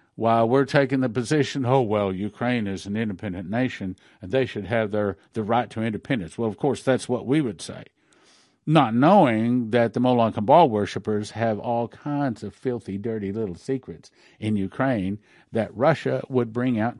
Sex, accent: male, American